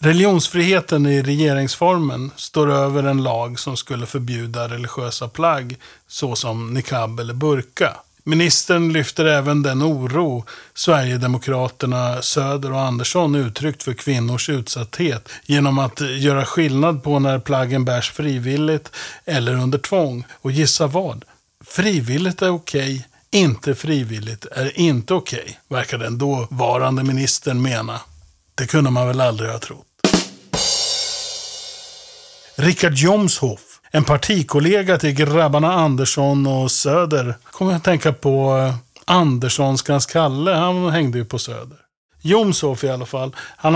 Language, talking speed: Swedish, 130 wpm